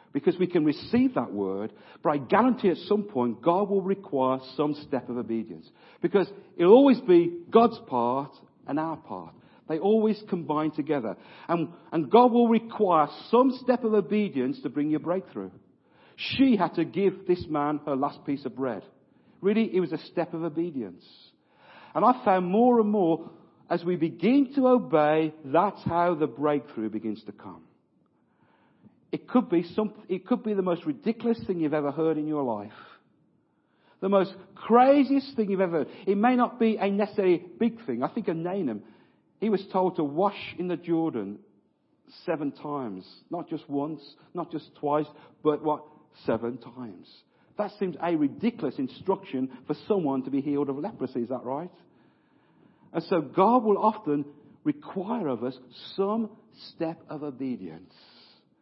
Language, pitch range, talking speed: English, 145-205 Hz, 170 wpm